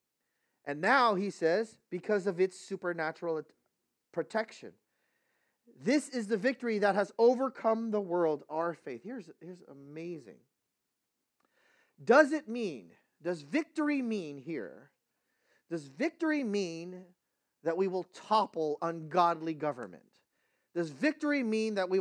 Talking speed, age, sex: 120 wpm, 40-59, male